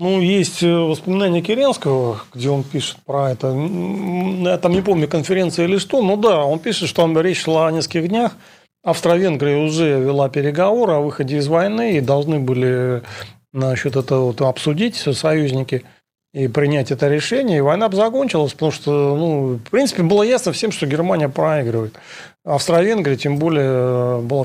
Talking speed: 165 wpm